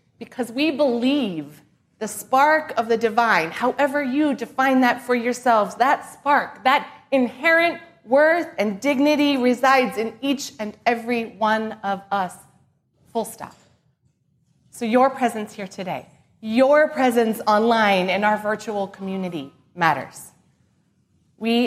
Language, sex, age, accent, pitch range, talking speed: English, female, 30-49, American, 220-270 Hz, 125 wpm